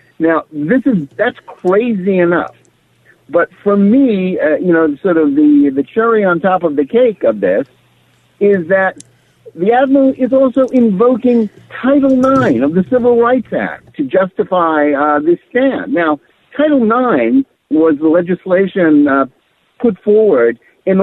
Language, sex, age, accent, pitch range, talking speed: English, male, 60-79, American, 155-230 Hz, 150 wpm